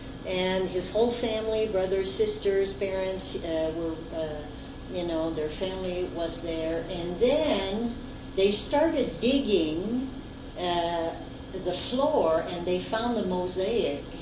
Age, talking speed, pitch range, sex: 60-79, 115 wpm, 160-205 Hz, female